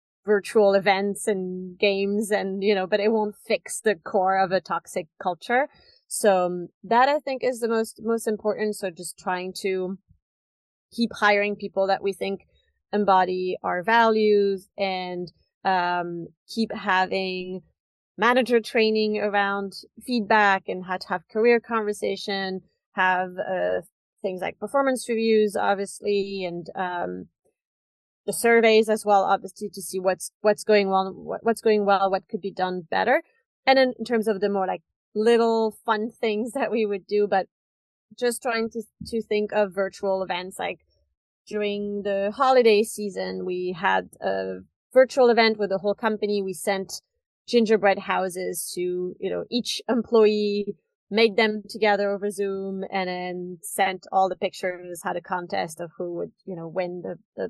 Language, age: English, 30-49